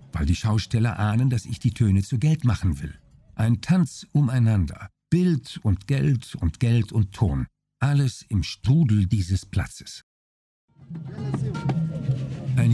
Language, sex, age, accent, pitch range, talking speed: German, male, 50-69, German, 105-145 Hz, 130 wpm